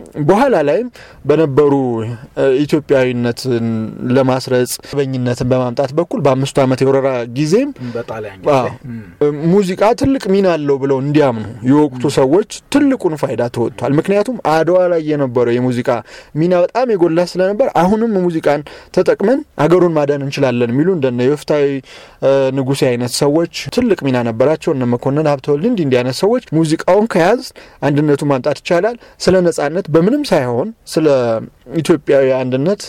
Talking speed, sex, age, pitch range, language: 85 wpm, male, 30-49, 130-175 Hz, Amharic